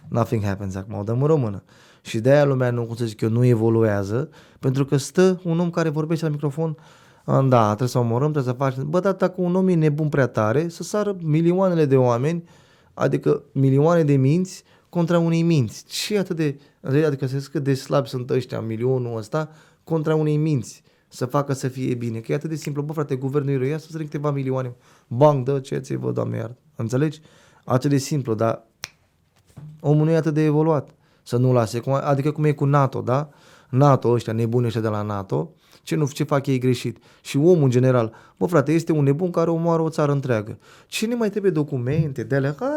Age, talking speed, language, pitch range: 20-39, 200 wpm, Romanian, 125-160 Hz